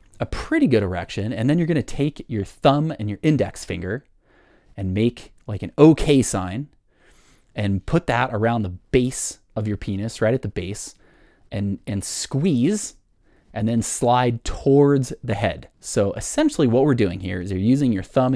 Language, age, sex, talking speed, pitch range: English, 30-49, male, 175 wpm, 95-115 Hz